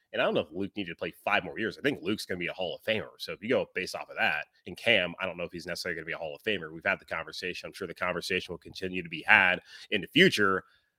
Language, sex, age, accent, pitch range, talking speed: English, male, 30-49, American, 100-145 Hz, 335 wpm